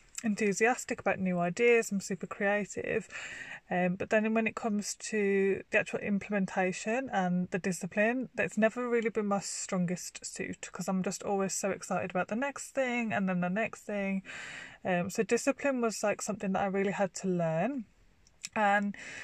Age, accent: 20-39, British